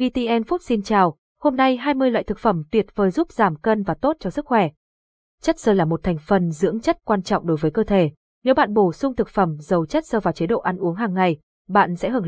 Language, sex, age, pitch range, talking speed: Vietnamese, female, 20-39, 185-240 Hz, 260 wpm